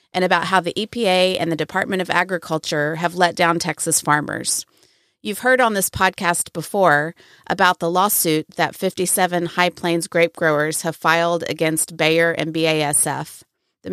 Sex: female